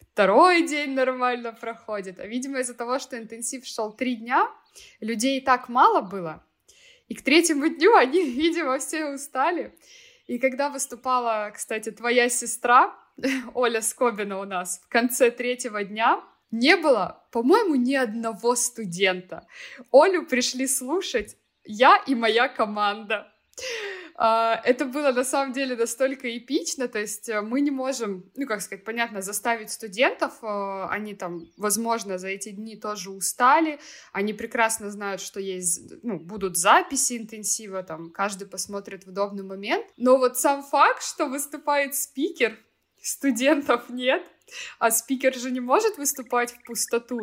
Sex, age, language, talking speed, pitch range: female, 20-39, Russian, 140 wpm, 210-275 Hz